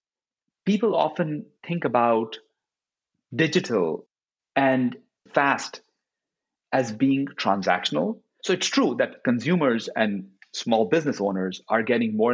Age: 40-59